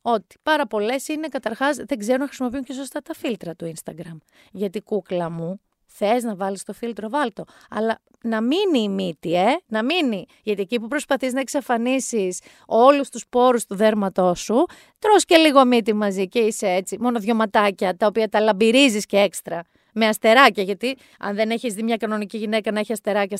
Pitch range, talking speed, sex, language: 210-275 Hz, 190 wpm, female, Greek